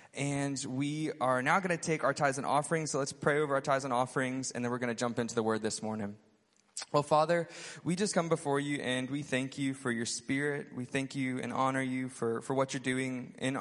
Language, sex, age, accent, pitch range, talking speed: English, male, 20-39, American, 130-145 Hz, 245 wpm